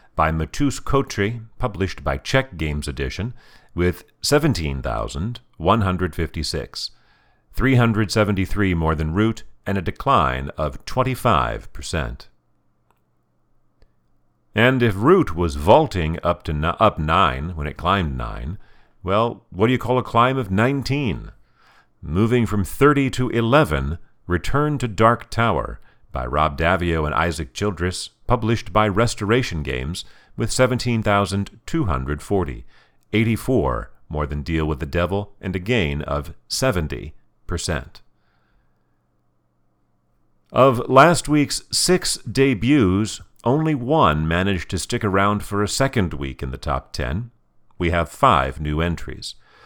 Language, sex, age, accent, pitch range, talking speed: English, male, 50-69, American, 80-120 Hz, 115 wpm